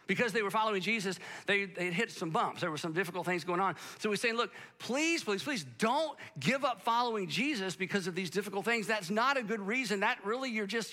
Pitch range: 180-240 Hz